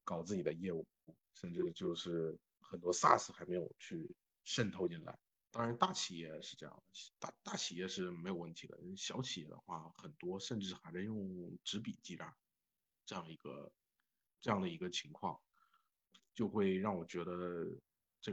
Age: 50-69